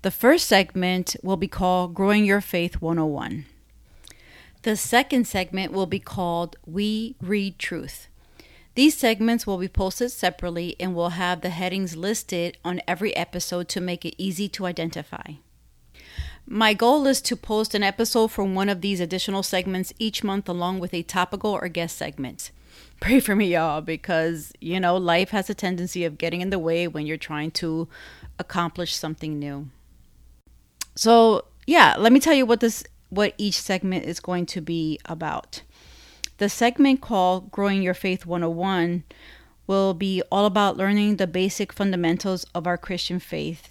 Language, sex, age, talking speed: English, female, 40-59, 165 wpm